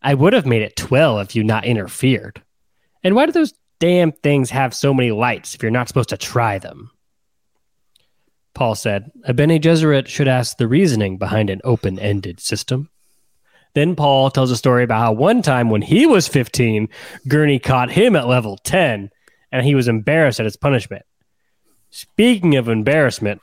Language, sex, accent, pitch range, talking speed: English, male, American, 115-150 Hz, 175 wpm